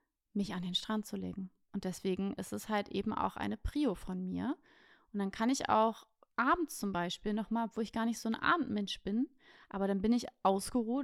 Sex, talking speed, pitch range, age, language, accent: female, 210 wpm, 200-260 Hz, 30-49, German, German